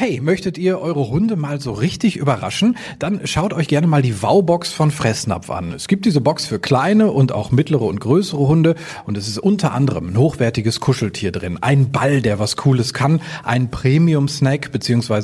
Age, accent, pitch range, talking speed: 40-59, German, 120-170 Hz, 195 wpm